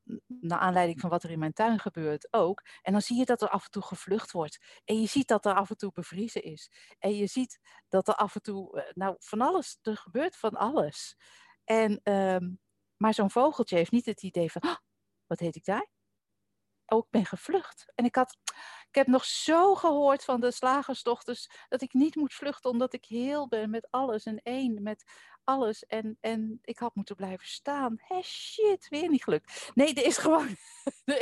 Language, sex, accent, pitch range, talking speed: Dutch, female, Dutch, 175-245 Hz, 210 wpm